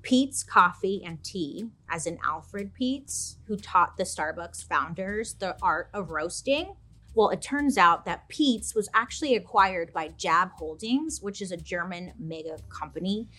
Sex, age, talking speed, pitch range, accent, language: female, 30-49, 155 wpm, 165-235 Hz, American, English